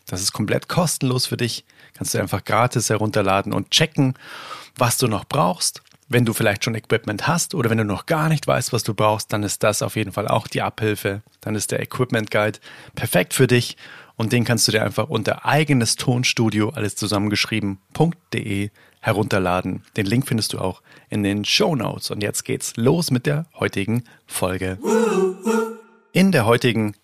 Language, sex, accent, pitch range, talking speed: German, male, German, 105-140 Hz, 185 wpm